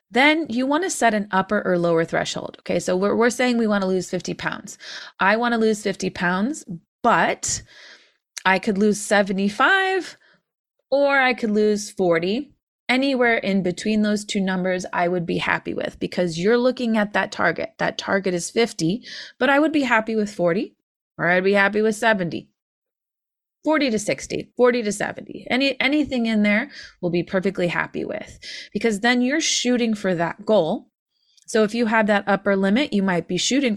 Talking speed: 185 wpm